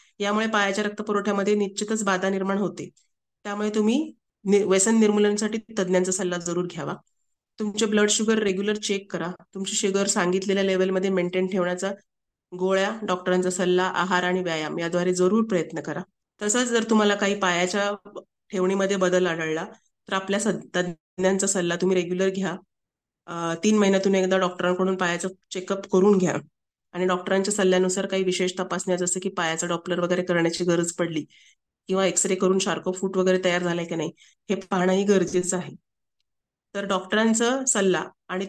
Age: 30-49